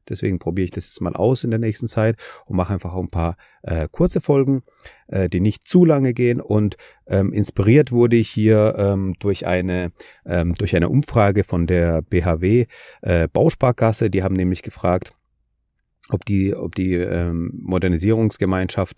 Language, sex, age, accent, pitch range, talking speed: German, male, 30-49, German, 90-120 Hz, 170 wpm